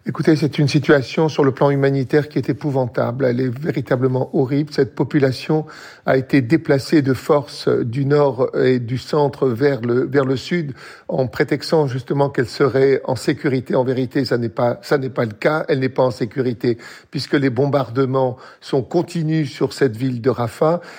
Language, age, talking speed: French, 50-69, 185 wpm